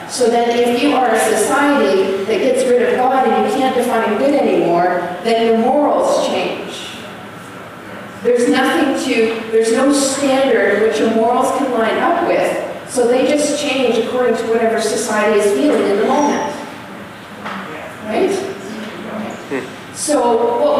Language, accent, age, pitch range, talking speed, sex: English, American, 40-59, 230-275 Hz, 145 wpm, female